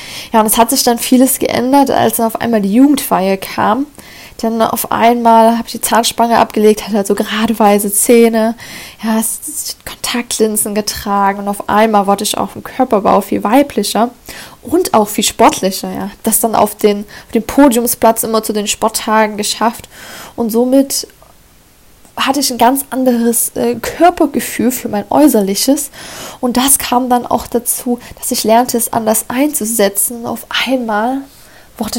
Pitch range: 215-250 Hz